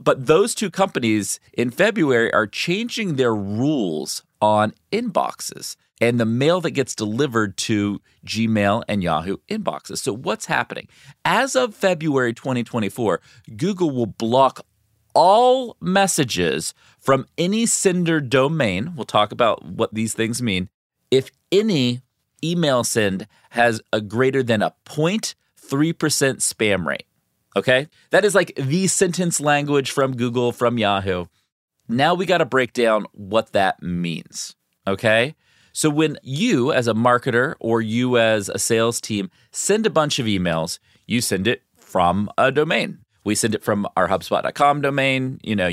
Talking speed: 145 wpm